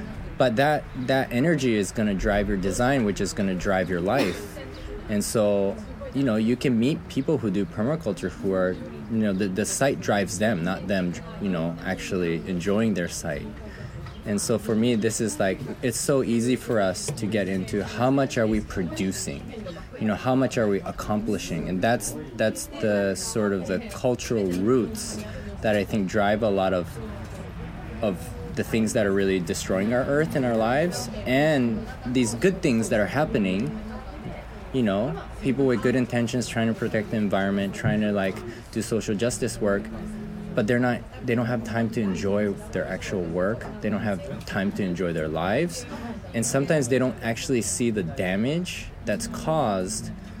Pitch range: 100-125 Hz